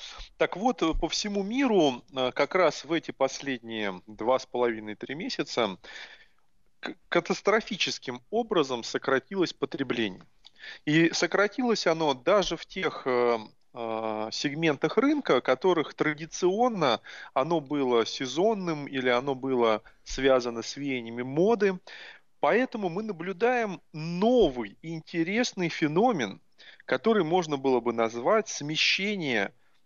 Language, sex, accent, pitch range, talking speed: Russian, male, native, 125-190 Hz, 105 wpm